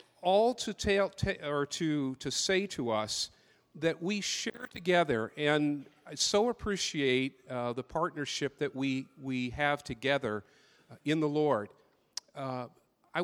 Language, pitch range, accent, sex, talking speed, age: English, 130-170 Hz, American, male, 140 wpm, 50-69